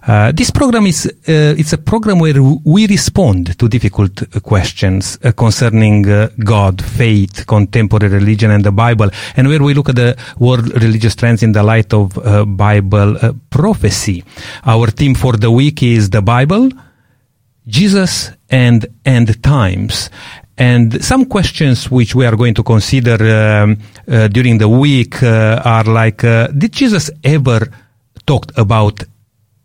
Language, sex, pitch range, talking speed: English, male, 110-135 Hz, 155 wpm